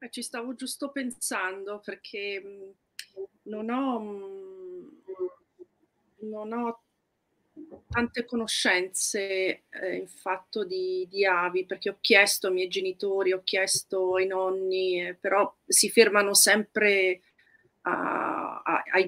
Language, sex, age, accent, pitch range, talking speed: Italian, female, 40-59, native, 180-210 Hz, 105 wpm